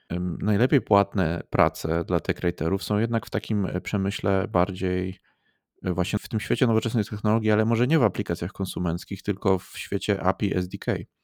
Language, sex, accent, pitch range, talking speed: Polish, male, native, 85-100 Hz, 150 wpm